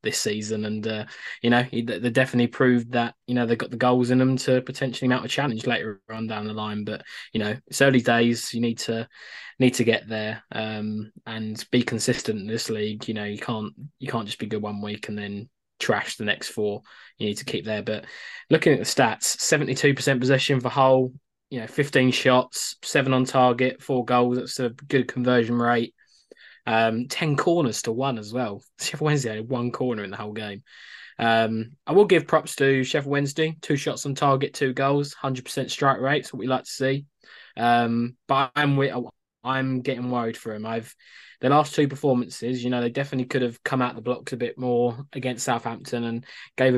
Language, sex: English, male